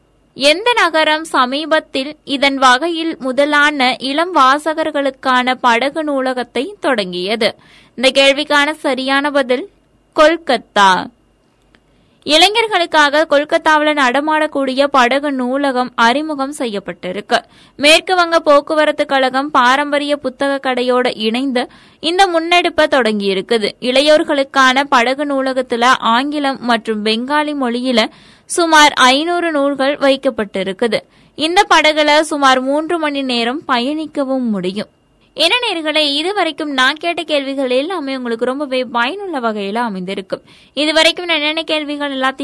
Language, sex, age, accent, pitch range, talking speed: Tamil, female, 20-39, native, 255-310 Hz, 75 wpm